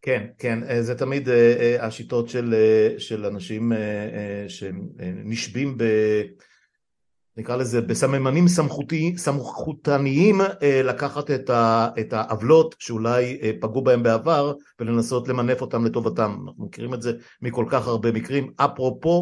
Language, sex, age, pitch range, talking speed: Hebrew, male, 50-69, 110-135 Hz, 110 wpm